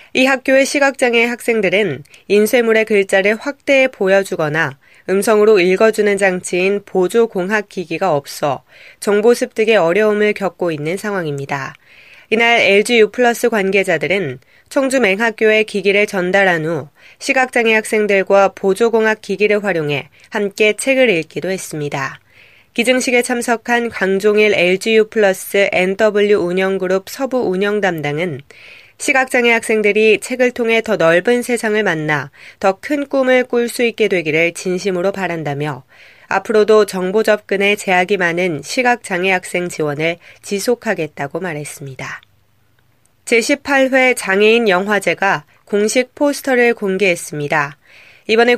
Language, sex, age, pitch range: Korean, female, 20-39, 180-230 Hz